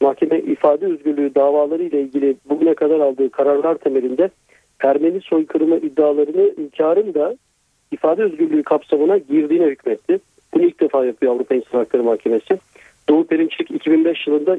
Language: Turkish